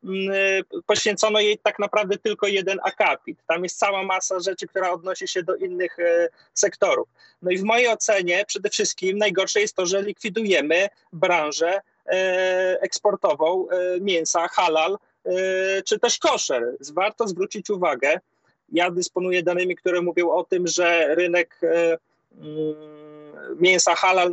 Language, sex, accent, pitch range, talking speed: Polish, male, native, 170-200 Hz, 125 wpm